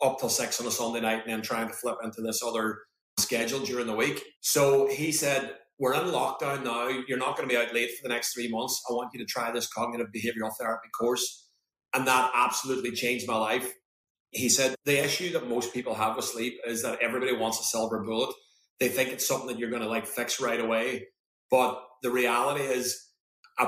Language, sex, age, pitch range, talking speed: English, male, 30-49, 120-135 Hz, 225 wpm